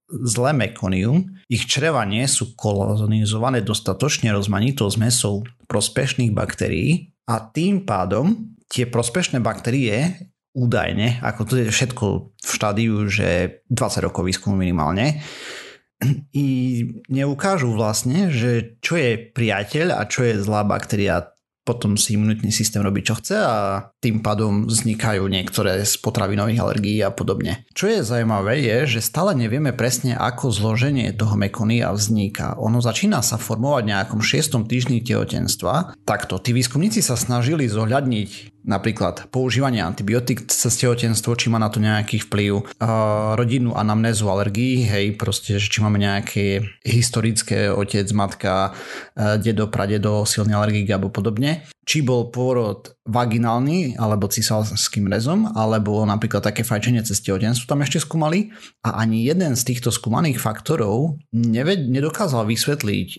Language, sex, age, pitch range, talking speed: Slovak, male, 30-49, 105-125 Hz, 135 wpm